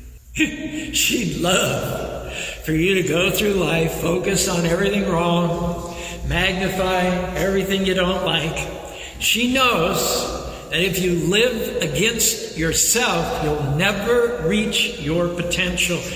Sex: male